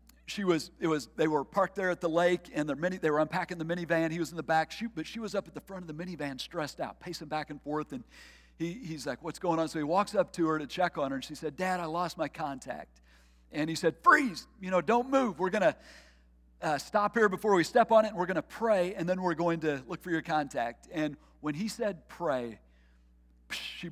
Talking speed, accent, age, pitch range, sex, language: 260 wpm, American, 50-69, 110-170 Hz, male, English